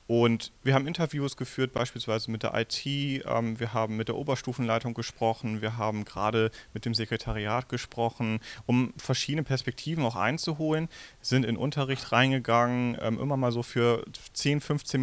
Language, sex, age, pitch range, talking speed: German, male, 30-49, 115-135 Hz, 145 wpm